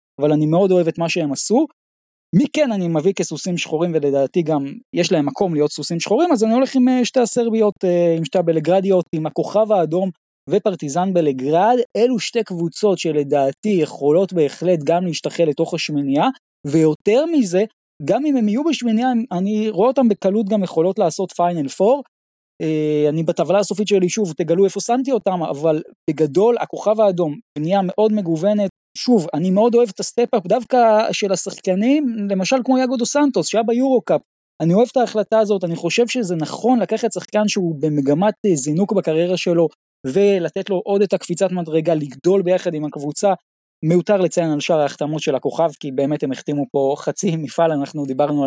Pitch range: 160-215 Hz